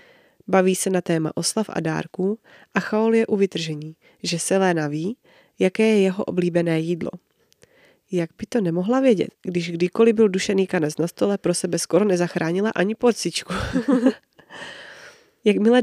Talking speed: 150 wpm